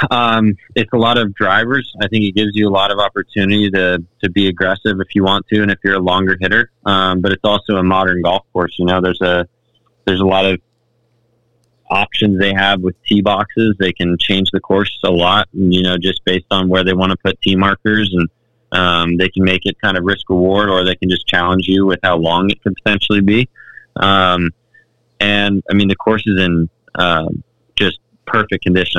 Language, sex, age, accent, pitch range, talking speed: English, male, 20-39, American, 90-105 Hz, 215 wpm